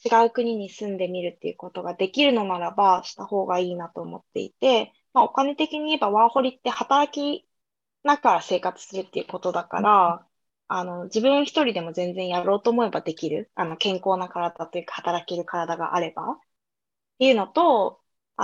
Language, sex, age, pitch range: Japanese, female, 20-39, 180-245 Hz